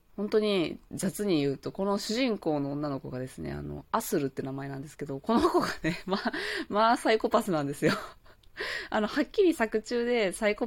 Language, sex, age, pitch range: Japanese, female, 20-39, 145-215 Hz